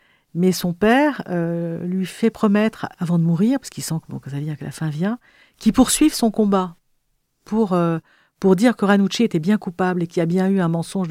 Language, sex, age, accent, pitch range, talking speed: French, female, 50-69, French, 175-215 Hz, 240 wpm